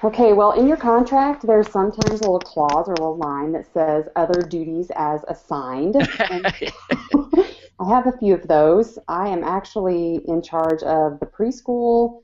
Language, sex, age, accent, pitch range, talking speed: English, female, 30-49, American, 155-195 Hz, 165 wpm